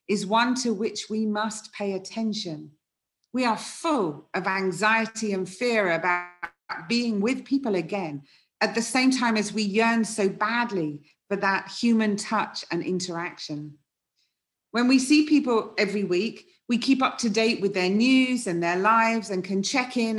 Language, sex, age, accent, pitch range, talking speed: English, female, 40-59, British, 180-220 Hz, 165 wpm